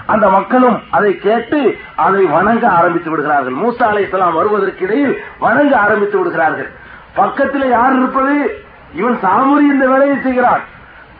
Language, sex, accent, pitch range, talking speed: Tamil, male, native, 225-285 Hz, 120 wpm